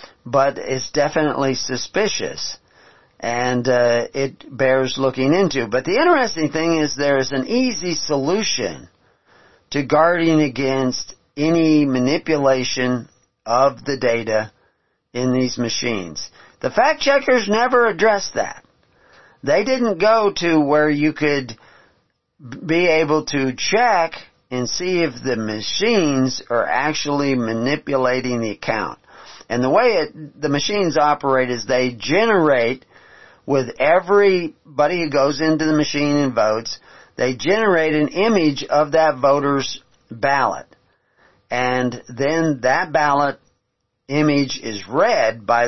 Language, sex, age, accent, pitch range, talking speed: English, male, 50-69, American, 120-155 Hz, 120 wpm